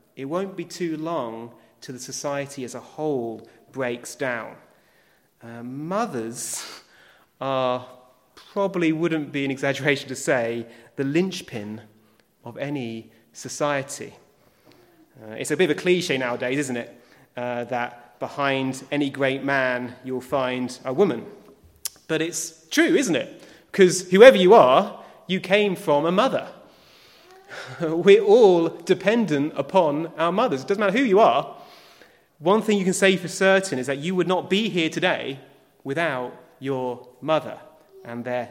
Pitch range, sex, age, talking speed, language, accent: 120-165 Hz, male, 30-49, 145 wpm, English, British